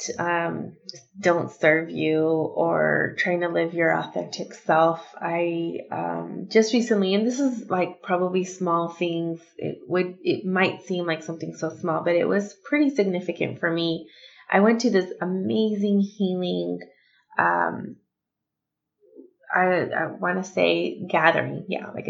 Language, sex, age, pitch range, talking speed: English, female, 20-39, 165-195 Hz, 145 wpm